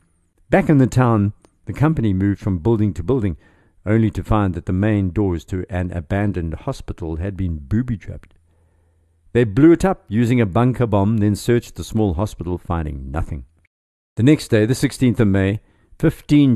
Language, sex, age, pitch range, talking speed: English, male, 60-79, 85-120 Hz, 175 wpm